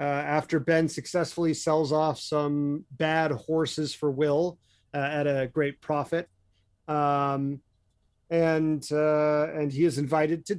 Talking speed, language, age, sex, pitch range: 135 wpm, English, 30-49, male, 140-175 Hz